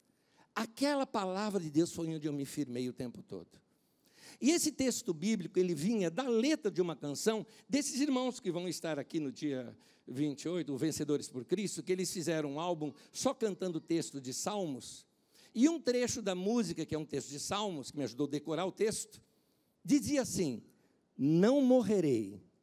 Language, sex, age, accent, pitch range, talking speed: Portuguese, male, 60-79, Brazilian, 165-270 Hz, 185 wpm